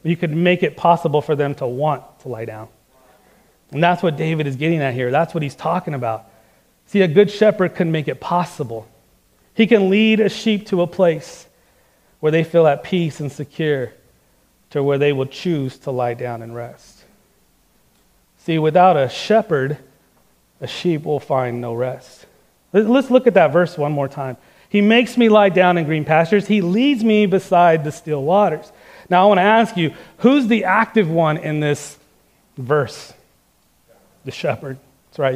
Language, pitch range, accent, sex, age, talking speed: English, 145-215 Hz, American, male, 30-49, 185 wpm